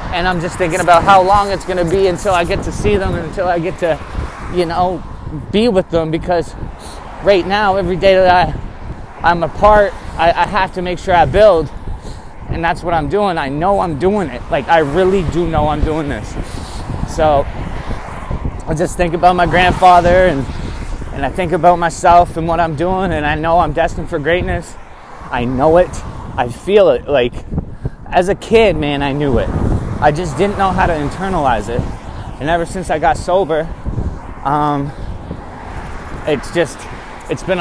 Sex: male